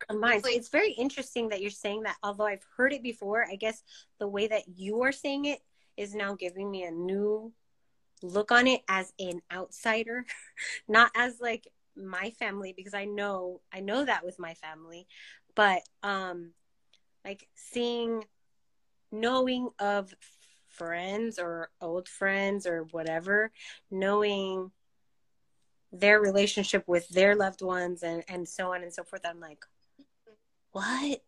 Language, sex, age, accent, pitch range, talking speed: English, female, 20-39, American, 175-215 Hz, 150 wpm